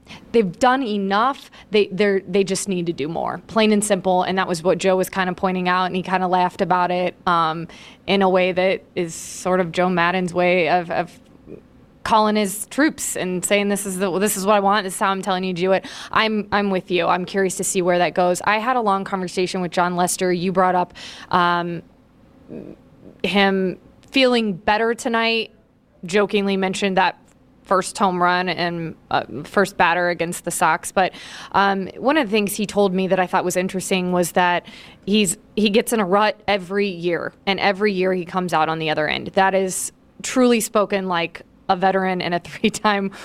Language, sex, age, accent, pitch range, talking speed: English, female, 20-39, American, 185-210 Hz, 210 wpm